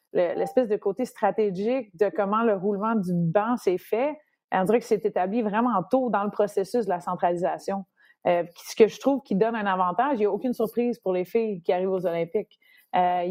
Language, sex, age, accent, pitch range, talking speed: French, female, 30-49, Canadian, 190-230 Hz, 215 wpm